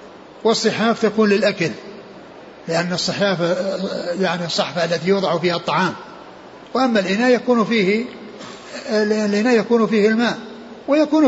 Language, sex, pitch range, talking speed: Arabic, male, 195-230 Hz, 105 wpm